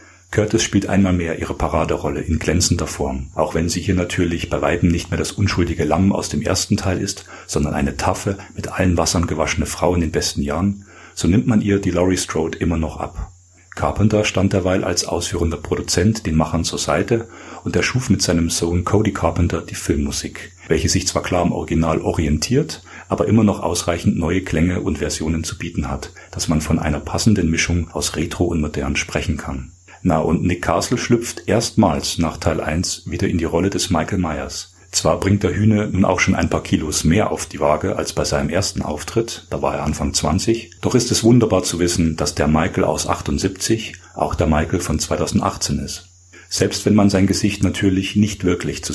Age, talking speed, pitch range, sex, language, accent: 40-59, 200 wpm, 80-95 Hz, male, German, German